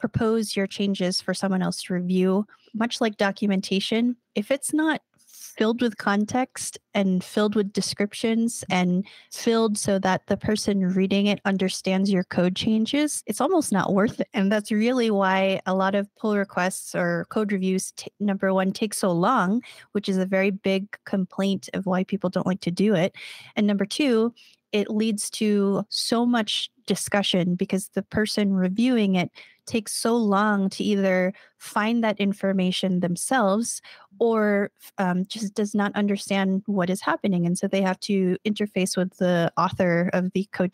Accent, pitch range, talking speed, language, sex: American, 185-215 Hz, 170 wpm, English, female